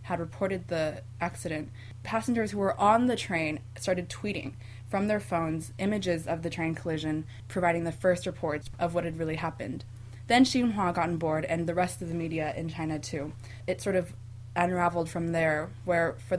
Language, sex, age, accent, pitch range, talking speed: English, female, 20-39, American, 155-180 Hz, 185 wpm